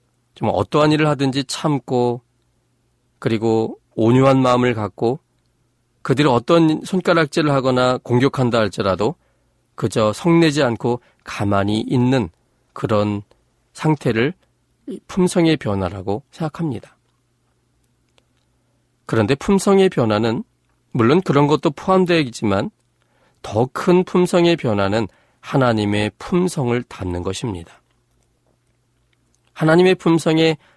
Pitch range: 110-145 Hz